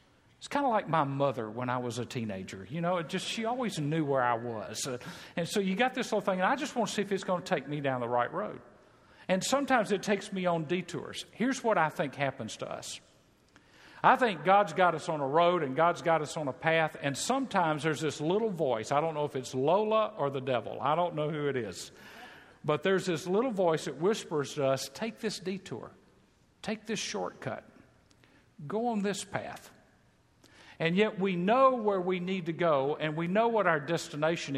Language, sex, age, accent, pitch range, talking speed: English, male, 50-69, American, 145-200 Hz, 220 wpm